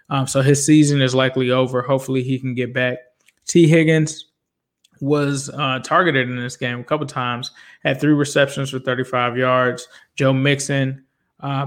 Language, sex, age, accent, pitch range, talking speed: English, male, 20-39, American, 130-145 Hz, 165 wpm